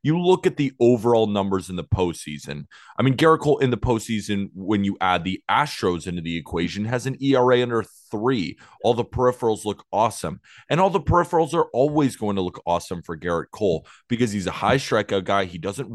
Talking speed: 205 wpm